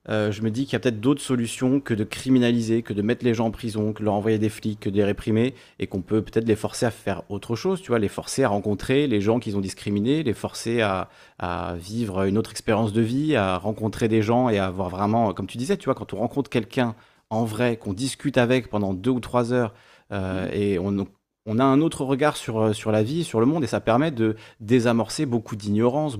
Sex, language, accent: male, French, French